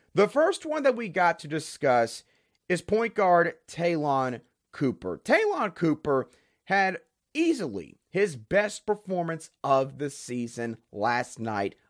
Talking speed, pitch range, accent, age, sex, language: 125 wpm, 135-220 Hz, American, 30-49, male, English